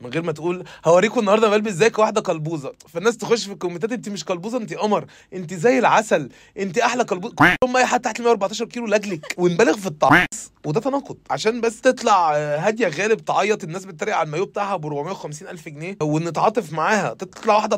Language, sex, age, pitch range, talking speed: Arabic, male, 20-39, 170-220 Hz, 190 wpm